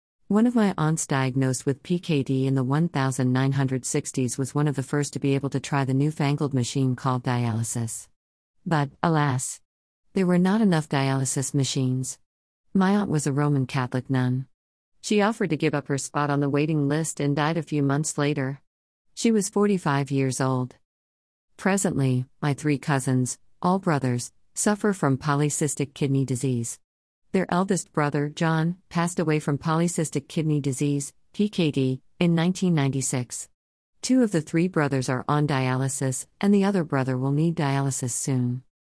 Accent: American